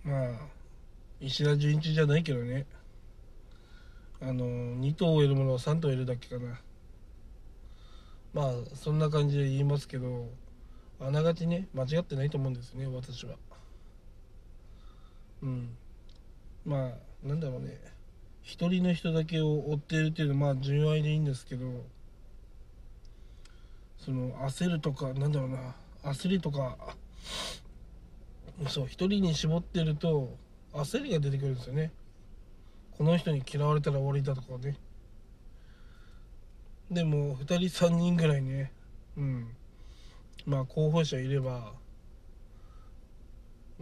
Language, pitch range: Japanese, 115-150 Hz